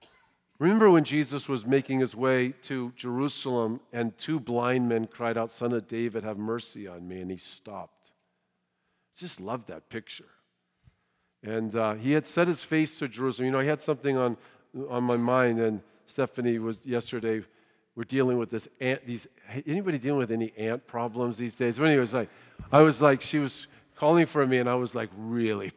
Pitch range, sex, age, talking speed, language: 120-160 Hz, male, 50-69, 190 wpm, English